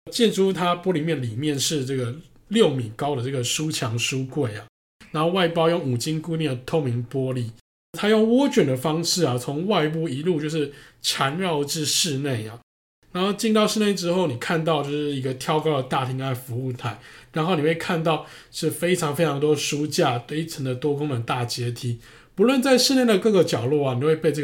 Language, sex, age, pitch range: Chinese, male, 20-39, 125-170 Hz